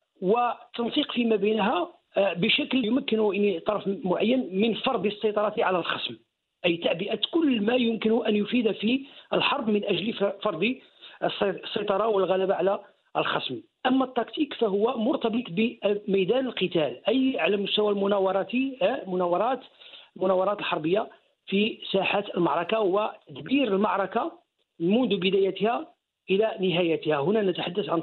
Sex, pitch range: male, 190-240 Hz